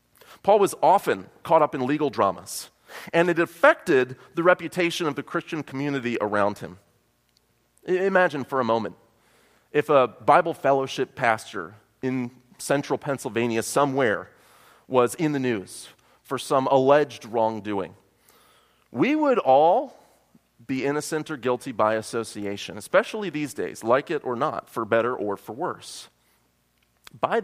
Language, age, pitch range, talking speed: English, 30-49, 105-150 Hz, 135 wpm